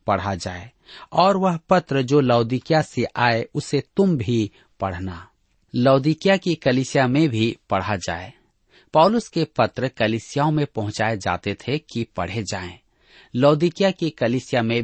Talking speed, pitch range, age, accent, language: 140 wpm, 110-150 Hz, 40-59, native, Hindi